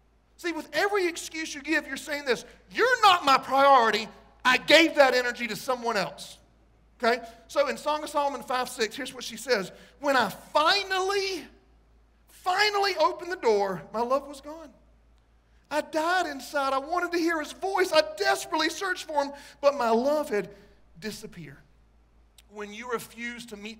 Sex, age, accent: male, 40-59, American